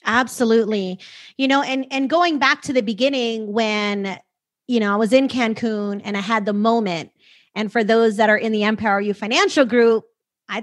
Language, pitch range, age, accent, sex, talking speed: English, 235-325 Hz, 30-49, American, female, 190 wpm